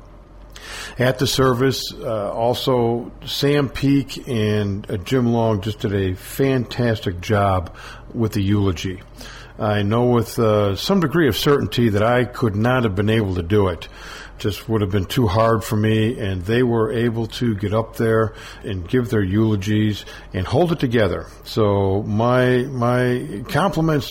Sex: male